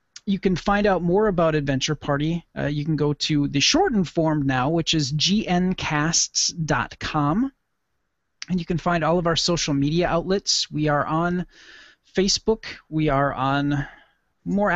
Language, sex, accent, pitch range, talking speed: English, male, American, 140-175 Hz, 155 wpm